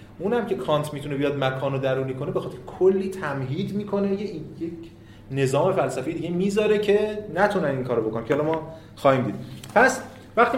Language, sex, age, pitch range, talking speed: Persian, male, 30-49, 110-165 Hz, 175 wpm